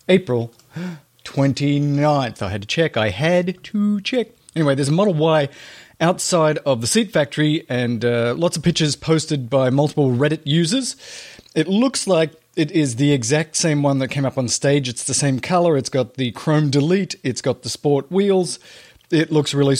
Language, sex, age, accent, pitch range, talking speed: English, male, 40-59, Australian, 130-165 Hz, 185 wpm